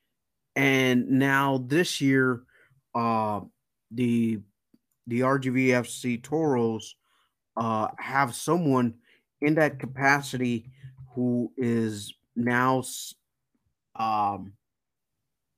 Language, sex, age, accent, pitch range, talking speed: English, male, 30-49, American, 115-135 Hz, 75 wpm